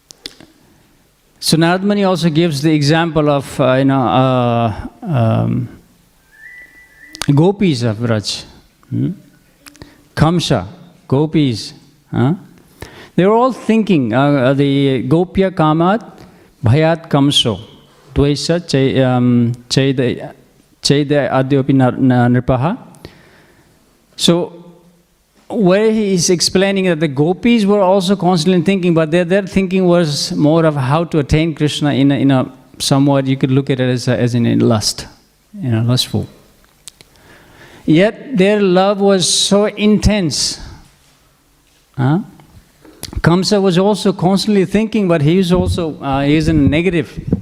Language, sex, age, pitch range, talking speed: English, male, 50-69, 130-185 Hz, 120 wpm